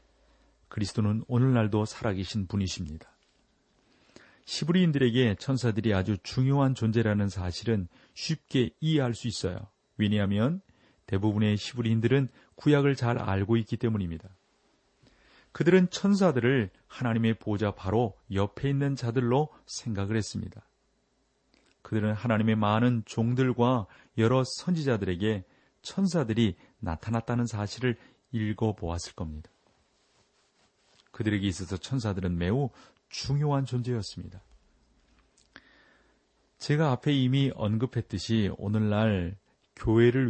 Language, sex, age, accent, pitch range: Korean, male, 40-59, native, 100-125 Hz